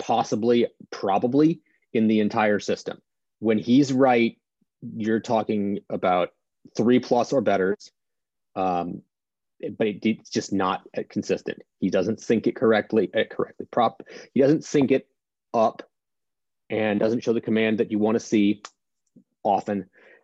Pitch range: 105-125 Hz